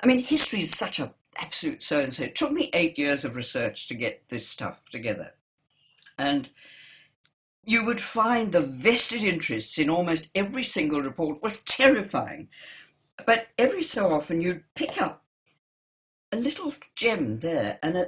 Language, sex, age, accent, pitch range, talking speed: English, female, 60-79, British, 145-235 Hz, 155 wpm